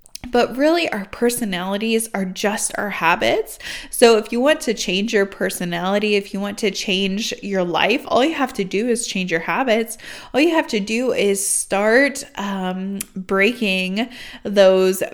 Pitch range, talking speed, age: 200-265 Hz, 165 wpm, 20-39